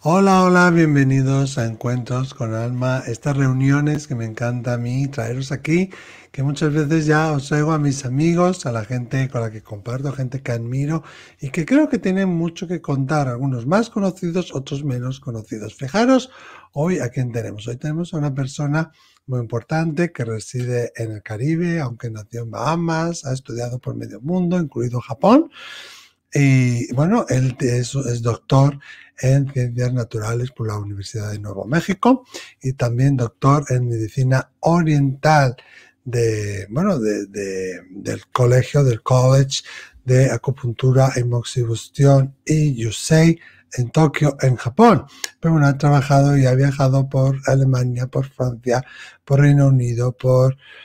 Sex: male